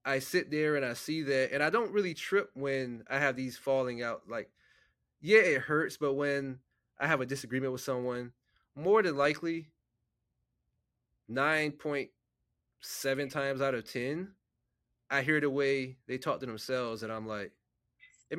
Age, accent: 20-39, American